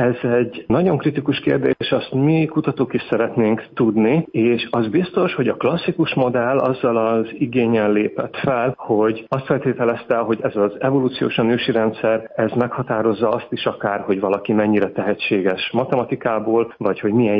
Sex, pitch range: male, 110-135 Hz